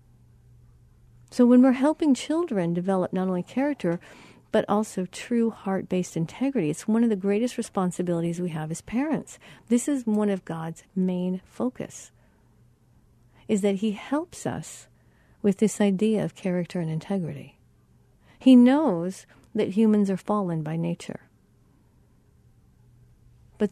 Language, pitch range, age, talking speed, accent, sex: English, 175-235 Hz, 50-69, 130 wpm, American, female